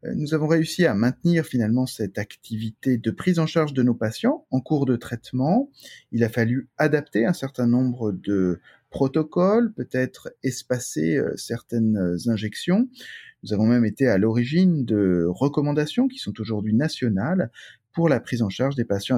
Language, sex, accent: French, male, French